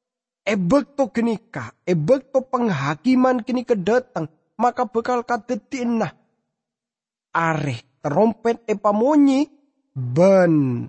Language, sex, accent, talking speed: English, male, Indonesian, 85 wpm